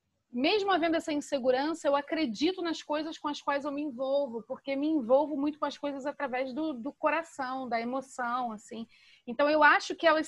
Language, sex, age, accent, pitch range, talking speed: Portuguese, female, 30-49, Brazilian, 250-310 Hz, 195 wpm